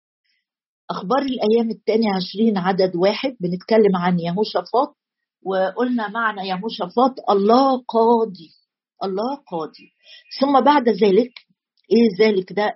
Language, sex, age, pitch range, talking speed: Arabic, female, 50-69, 185-235 Hz, 105 wpm